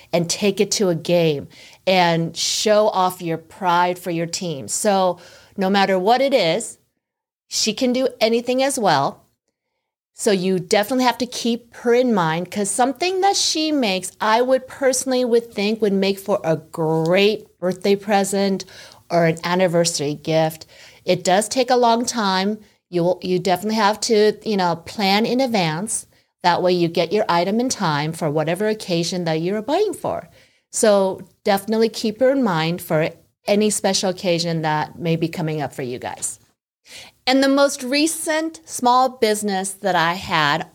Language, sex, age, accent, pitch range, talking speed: English, female, 40-59, American, 175-230 Hz, 170 wpm